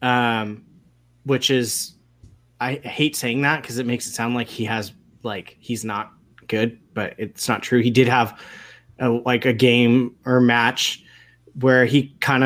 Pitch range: 120-145 Hz